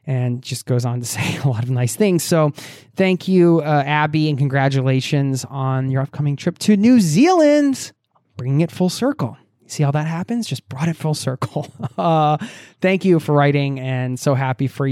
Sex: male